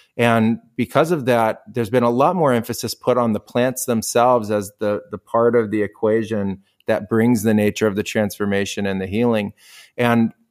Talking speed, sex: 190 wpm, male